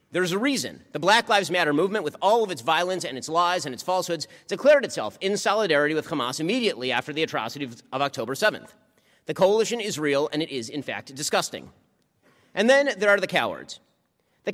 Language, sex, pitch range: English, male, 155-215 Hz